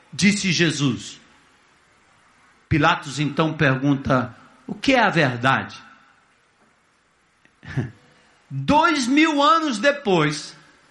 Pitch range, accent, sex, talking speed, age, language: 195-275 Hz, Brazilian, male, 75 wpm, 60-79, Portuguese